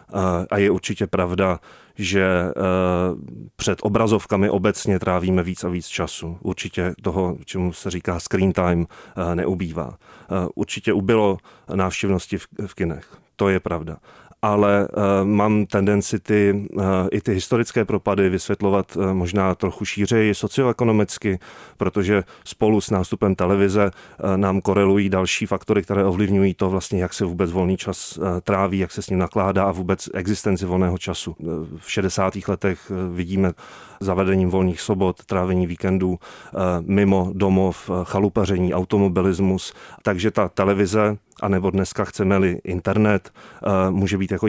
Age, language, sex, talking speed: 30-49, Czech, male, 140 wpm